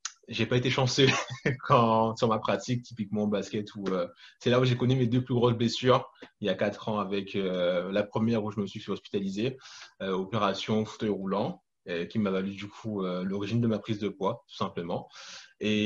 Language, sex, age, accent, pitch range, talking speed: French, male, 20-39, French, 100-125 Hz, 215 wpm